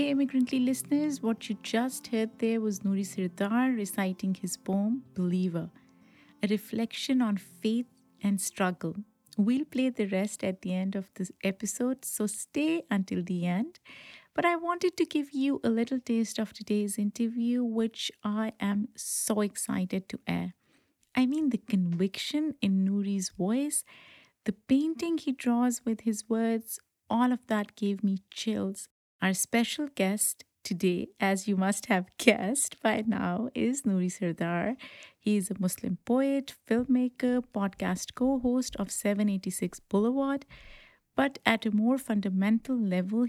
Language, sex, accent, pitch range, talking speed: English, female, Indian, 200-250 Hz, 150 wpm